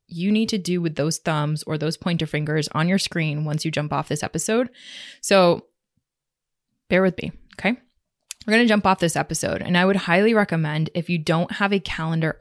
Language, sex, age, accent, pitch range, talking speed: English, female, 20-39, American, 155-190 Hz, 210 wpm